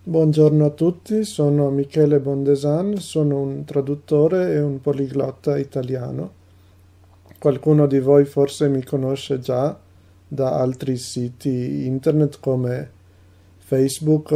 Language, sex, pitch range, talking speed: Italian, male, 95-145 Hz, 110 wpm